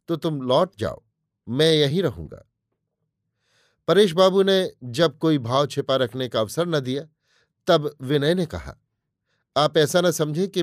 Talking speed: 160 wpm